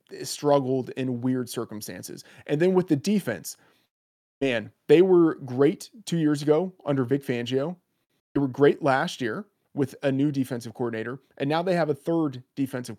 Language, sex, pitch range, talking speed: English, male, 125-155 Hz, 165 wpm